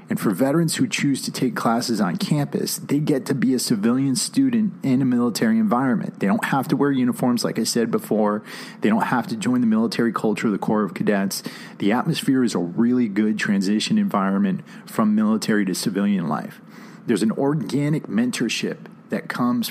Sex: male